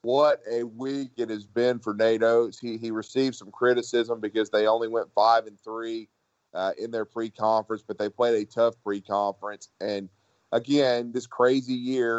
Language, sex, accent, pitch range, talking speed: English, male, American, 105-125 Hz, 170 wpm